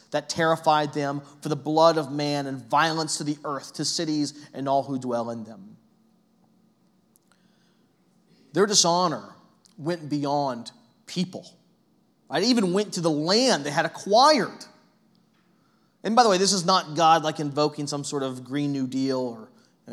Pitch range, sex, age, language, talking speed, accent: 145-210 Hz, male, 30-49, English, 160 wpm, American